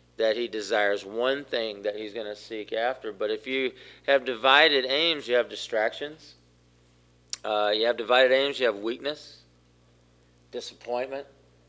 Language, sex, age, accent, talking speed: English, male, 40-59, American, 150 wpm